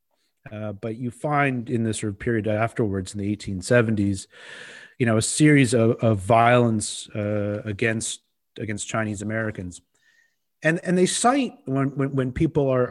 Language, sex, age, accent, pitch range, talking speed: English, male, 30-49, American, 110-130 Hz, 160 wpm